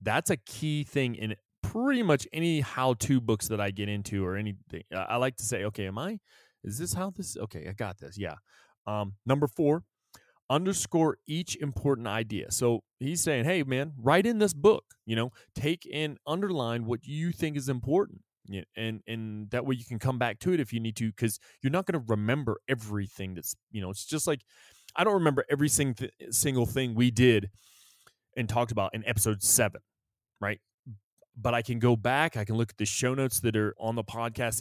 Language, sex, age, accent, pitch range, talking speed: English, male, 20-39, American, 110-140 Hz, 205 wpm